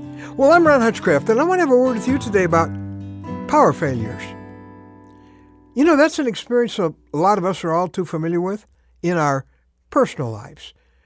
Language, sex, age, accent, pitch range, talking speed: English, male, 60-79, American, 145-240 Hz, 190 wpm